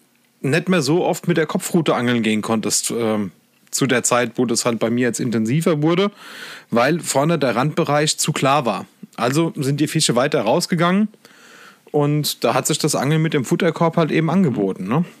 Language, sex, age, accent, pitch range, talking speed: German, male, 30-49, German, 120-155 Hz, 185 wpm